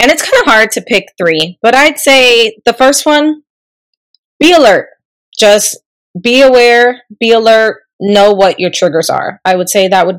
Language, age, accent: English, 20-39, American